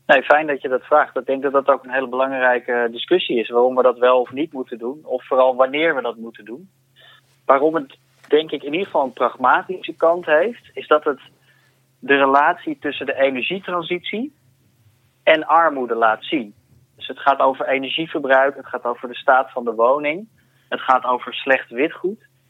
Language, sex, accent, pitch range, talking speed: Dutch, male, Dutch, 125-155 Hz, 190 wpm